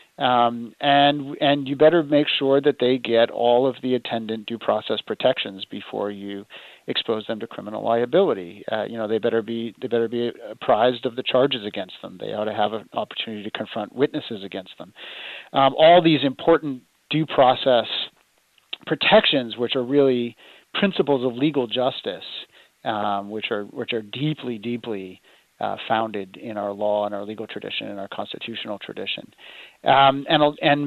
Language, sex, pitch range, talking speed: English, male, 110-140 Hz, 170 wpm